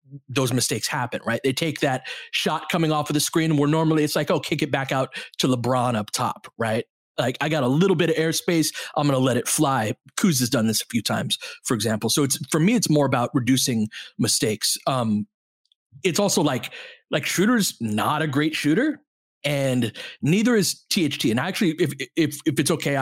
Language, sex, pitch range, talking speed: English, male, 130-160 Hz, 205 wpm